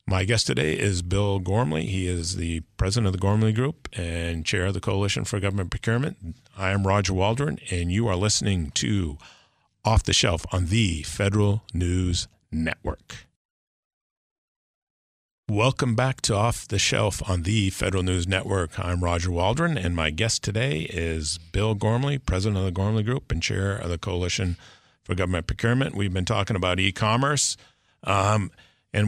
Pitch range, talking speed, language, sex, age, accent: 90-110 Hz, 165 wpm, English, male, 50-69, American